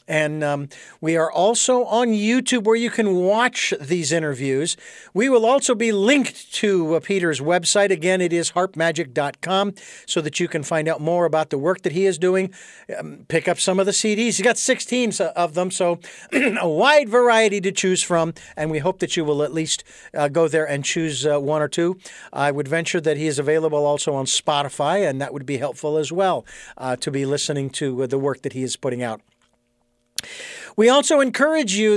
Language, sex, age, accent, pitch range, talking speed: English, male, 50-69, American, 150-205 Hz, 205 wpm